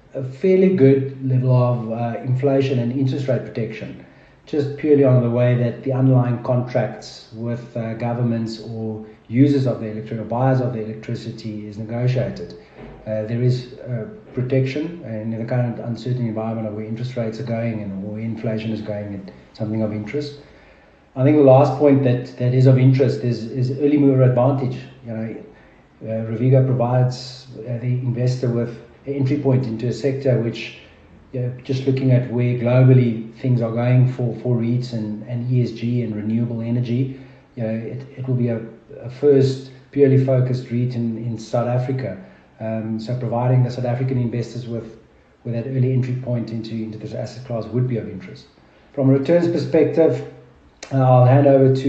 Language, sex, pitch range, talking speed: English, male, 115-130 Hz, 180 wpm